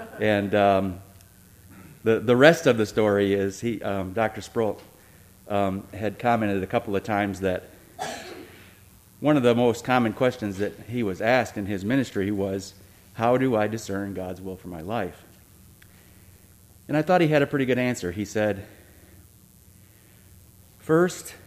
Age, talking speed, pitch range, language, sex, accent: 40-59, 155 wpm, 95-115 Hz, English, male, American